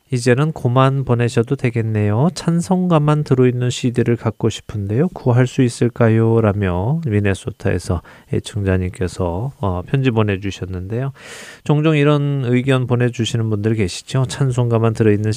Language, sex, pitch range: Korean, male, 100-125 Hz